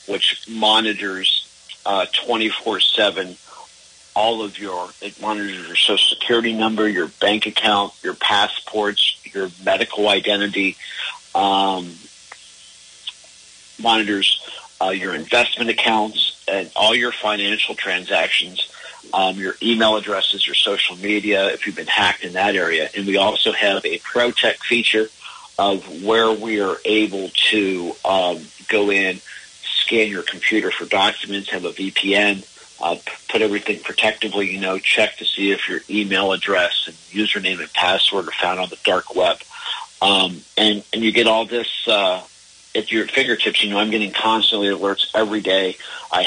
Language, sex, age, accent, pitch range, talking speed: English, male, 50-69, American, 95-110 Hz, 150 wpm